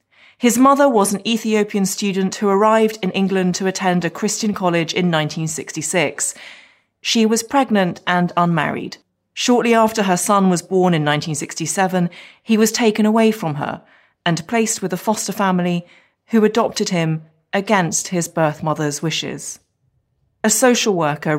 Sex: female